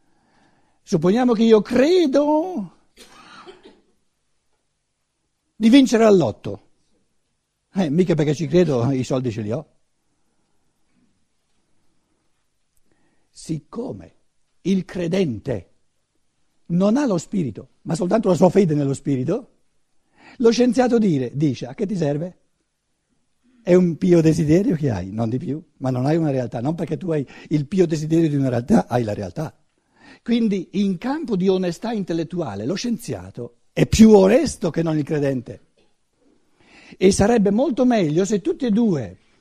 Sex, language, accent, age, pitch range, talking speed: male, Italian, native, 60-79, 135-215 Hz, 135 wpm